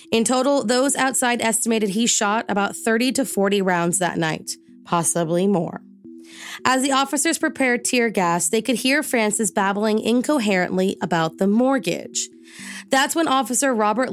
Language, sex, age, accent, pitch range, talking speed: English, female, 20-39, American, 180-230 Hz, 150 wpm